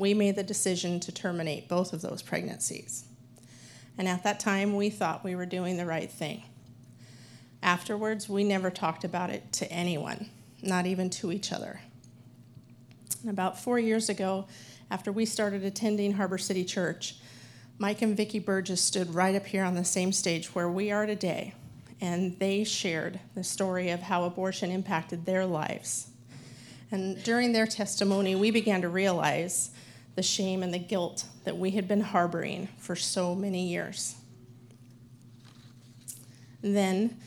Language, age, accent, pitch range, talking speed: English, 40-59, American, 150-200 Hz, 155 wpm